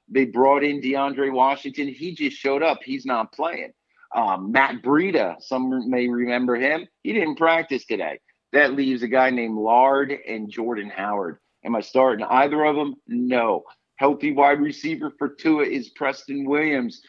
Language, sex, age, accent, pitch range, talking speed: English, male, 50-69, American, 120-145 Hz, 165 wpm